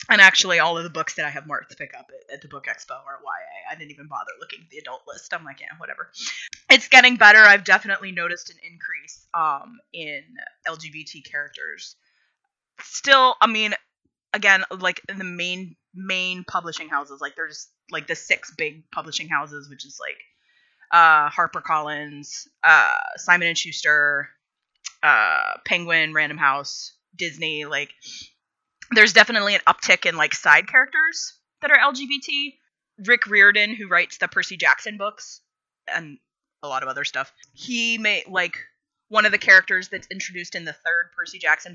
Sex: female